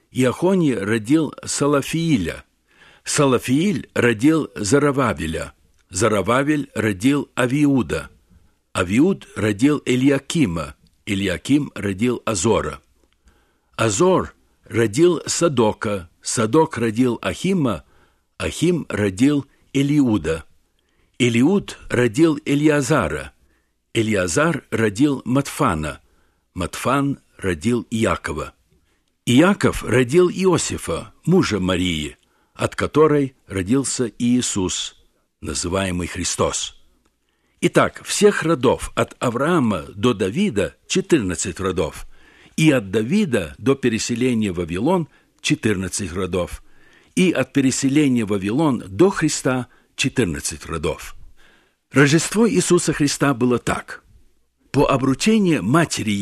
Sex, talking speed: male, 90 wpm